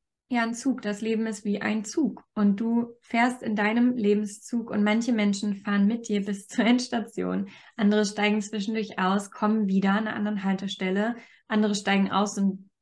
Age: 20-39